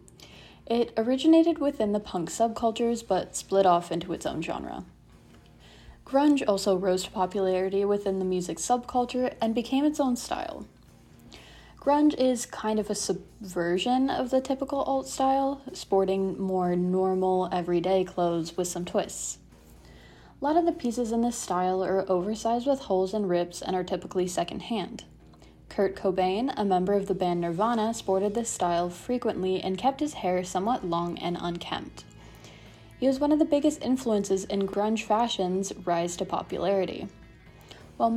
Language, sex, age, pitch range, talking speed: English, female, 20-39, 185-240 Hz, 155 wpm